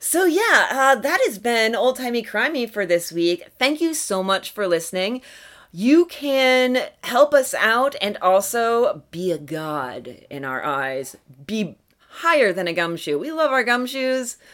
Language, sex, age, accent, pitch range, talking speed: English, female, 30-49, American, 175-250 Hz, 165 wpm